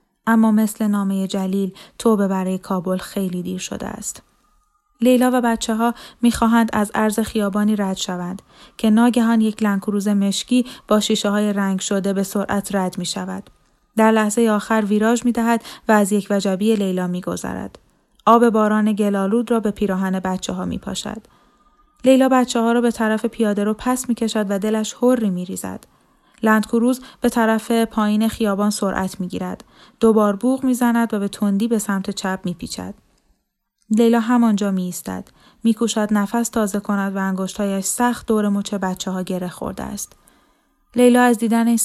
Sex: female